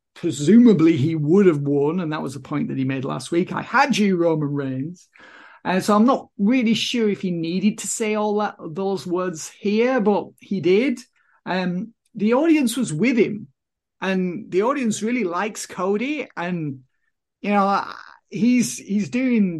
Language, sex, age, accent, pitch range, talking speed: English, male, 50-69, British, 150-205 Hz, 180 wpm